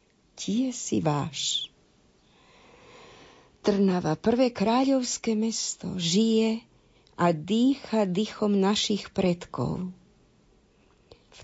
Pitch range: 175-210 Hz